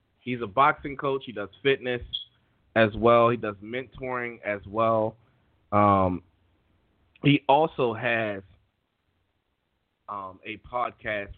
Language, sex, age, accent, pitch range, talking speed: English, male, 30-49, American, 100-115 Hz, 110 wpm